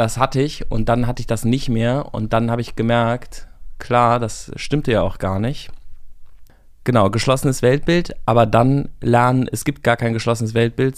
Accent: German